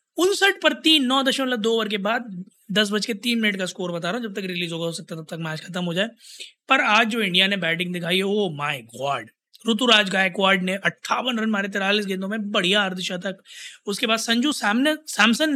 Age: 20-39